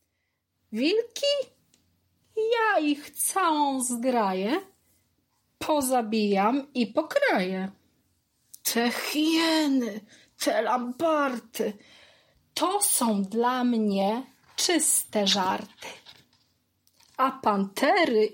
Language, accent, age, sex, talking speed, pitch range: Polish, native, 30-49, female, 65 wpm, 215-315 Hz